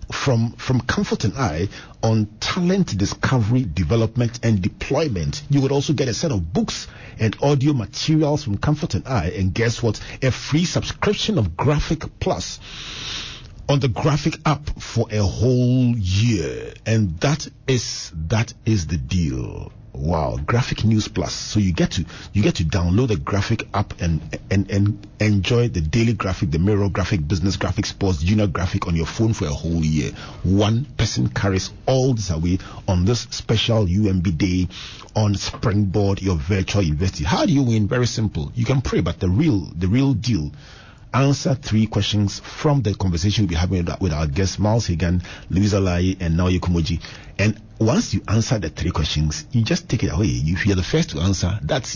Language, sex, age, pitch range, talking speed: English, male, 40-59, 95-120 Hz, 180 wpm